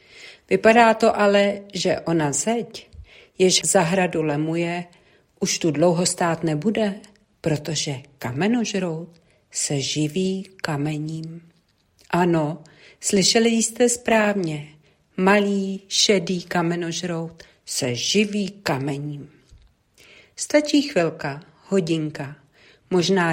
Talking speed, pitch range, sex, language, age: 85 wpm, 155-200 Hz, female, Czech, 50-69